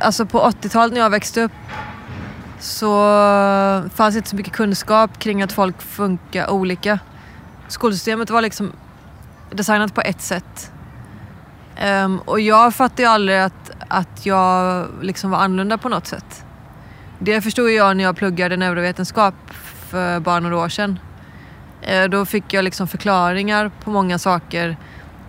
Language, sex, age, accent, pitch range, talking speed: English, female, 20-39, Swedish, 180-210 Hz, 140 wpm